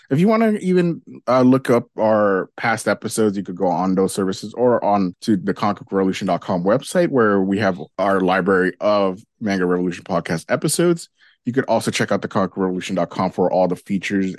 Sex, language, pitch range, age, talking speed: male, English, 90-115 Hz, 20-39, 185 wpm